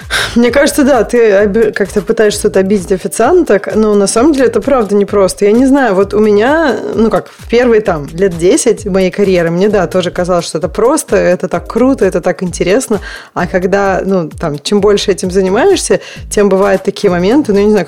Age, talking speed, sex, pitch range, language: 20-39, 200 wpm, female, 185-220 Hz, Russian